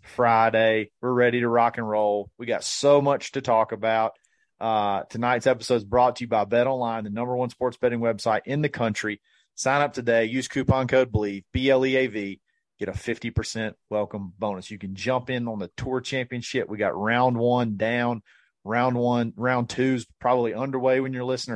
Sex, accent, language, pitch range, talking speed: male, American, English, 110-130 Hz, 190 wpm